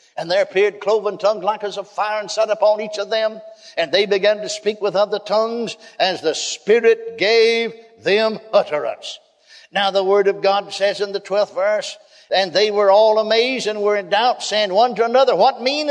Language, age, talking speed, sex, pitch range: English, 60-79, 205 wpm, male, 205-315 Hz